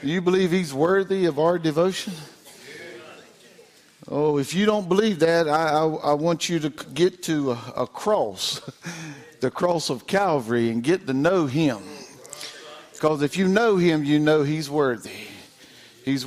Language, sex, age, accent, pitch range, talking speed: English, male, 50-69, American, 140-185 Hz, 160 wpm